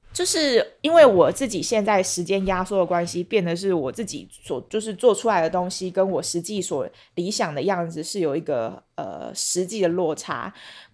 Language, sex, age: Chinese, female, 20-39